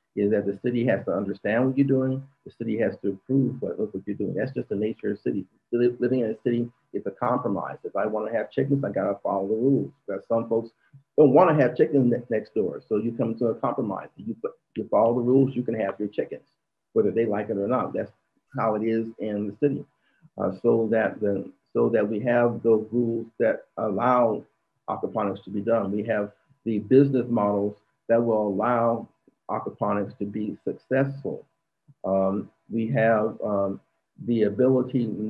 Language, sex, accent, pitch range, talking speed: English, male, American, 105-130 Hz, 200 wpm